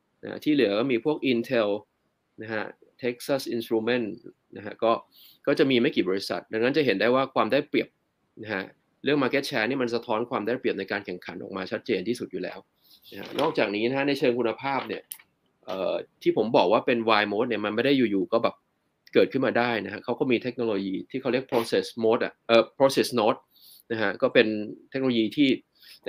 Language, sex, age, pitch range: Thai, male, 20-39, 110-135 Hz